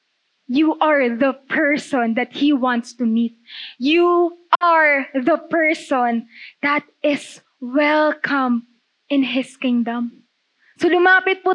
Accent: native